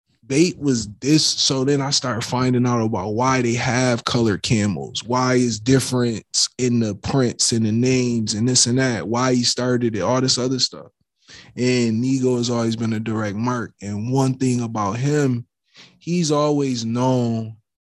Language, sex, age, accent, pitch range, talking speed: English, male, 20-39, American, 110-125 Hz, 175 wpm